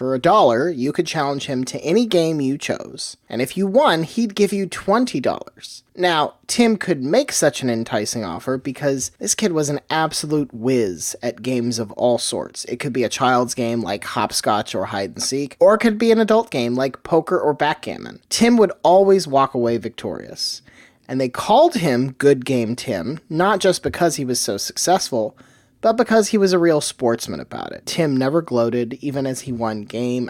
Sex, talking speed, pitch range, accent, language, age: male, 200 wpm, 130-195 Hz, American, English, 30-49